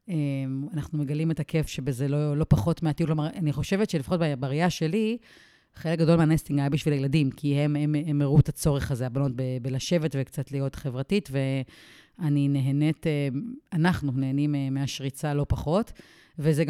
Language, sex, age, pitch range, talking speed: Hebrew, female, 30-49, 140-165 Hz, 115 wpm